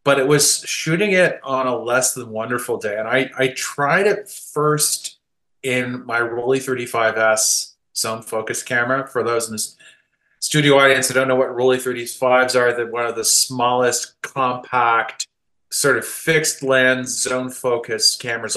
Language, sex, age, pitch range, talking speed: English, male, 30-49, 110-130 Hz, 165 wpm